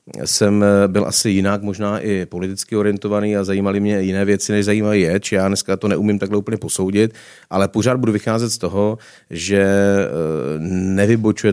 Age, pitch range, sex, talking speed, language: 30-49, 90-100 Hz, male, 160 wpm, Czech